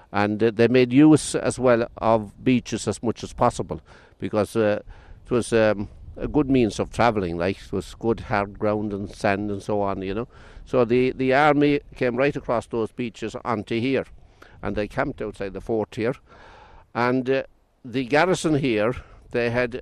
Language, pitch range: English, 100-125 Hz